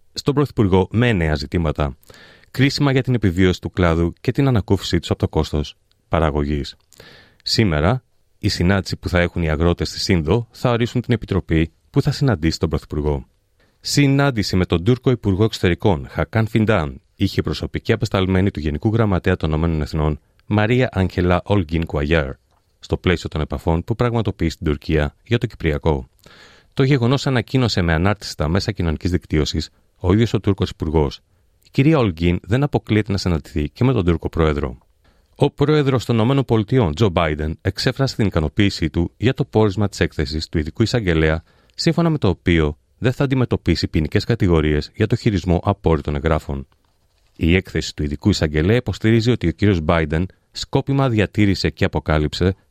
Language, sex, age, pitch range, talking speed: Greek, male, 30-49, 80-115 Hz, 160 wpm